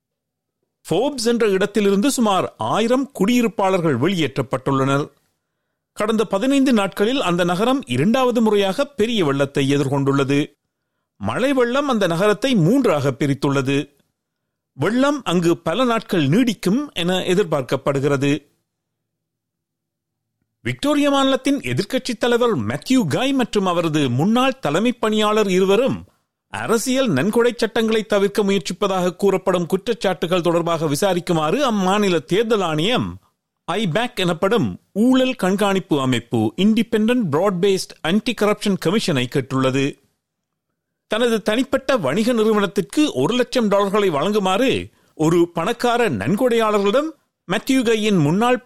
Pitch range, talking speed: 155-235 Hz, 90 wpm